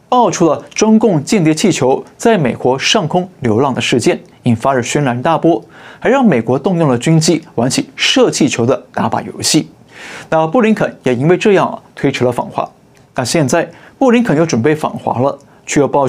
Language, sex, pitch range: Chinese, male, 145-205 Hz